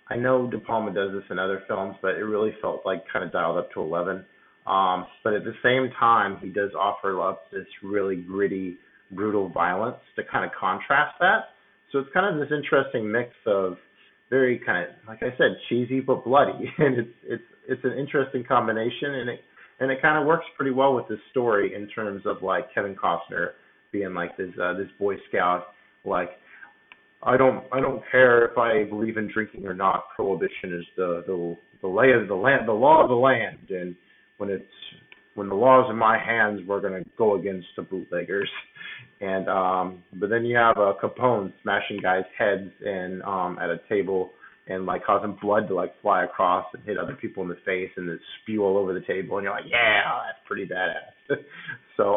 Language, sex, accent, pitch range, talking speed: English, male, American, 95-125 Hz, 205 wpm